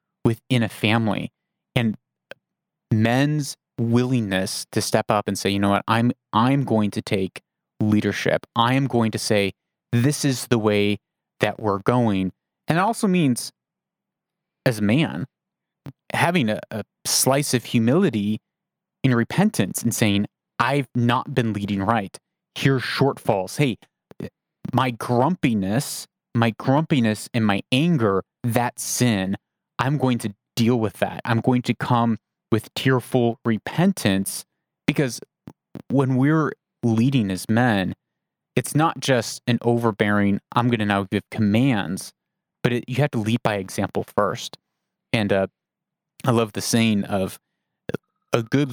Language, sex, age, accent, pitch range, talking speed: English, male, 30-49, American, 110-130 Hz, 140 wpm